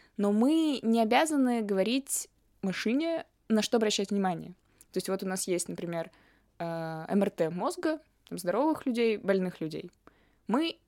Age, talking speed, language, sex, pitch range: 20-39, 130 wpm, Russian, female, 175-230 Hz